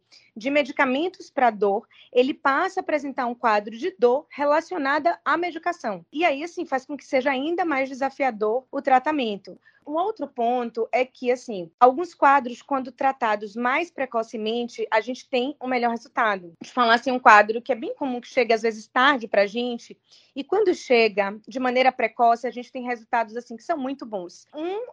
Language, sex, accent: Portuguese, female, Brazilian